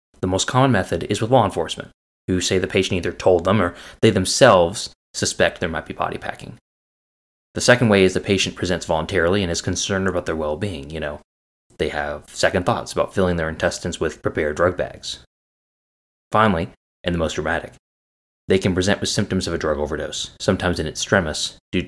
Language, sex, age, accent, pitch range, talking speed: English, male, 20-39, American, 75-105 Hz, 195 wpm